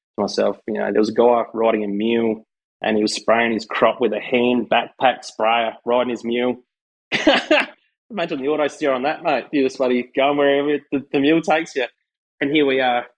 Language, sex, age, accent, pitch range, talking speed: English, male, 20-39, Australian, 115-135 Hz, 205 wpm